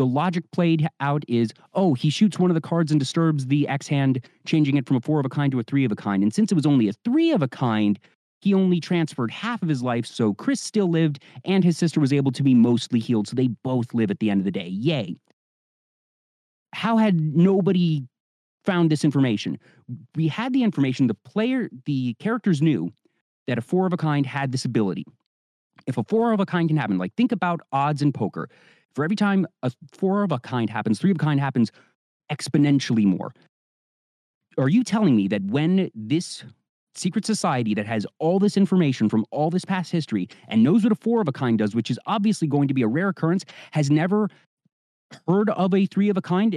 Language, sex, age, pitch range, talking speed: English, male, 30-49, 130-185 Hz, 210 wpm